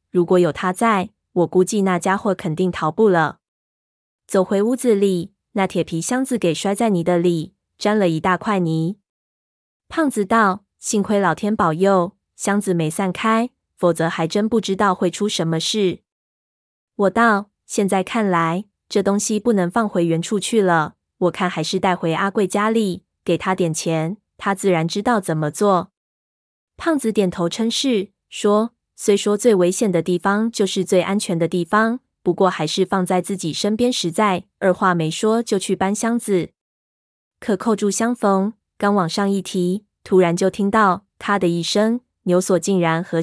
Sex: female